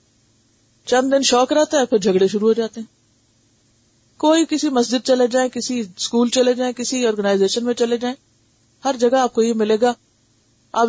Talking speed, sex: 180 wpm, female